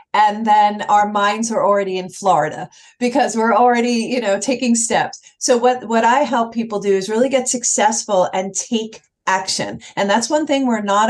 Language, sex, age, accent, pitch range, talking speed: English, female, 40-59, American, 190-235 Hz, 190 wpm